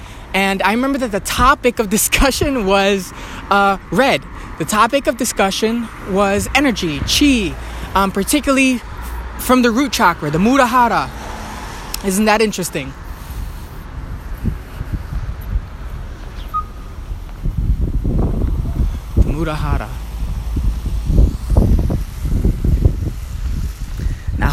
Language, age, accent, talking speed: English, 20-39, American, 75 wpm